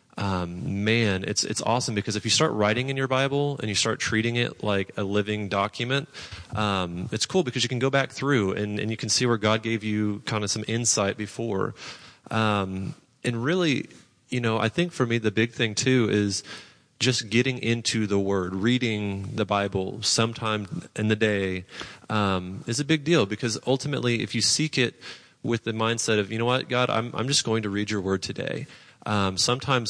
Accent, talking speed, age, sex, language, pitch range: American, 205 wpm, 30-49, male, English, 105-125 Hz